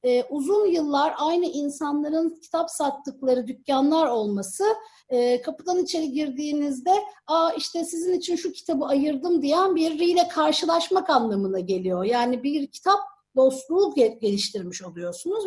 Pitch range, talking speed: 255-340 Hz, 125 wpm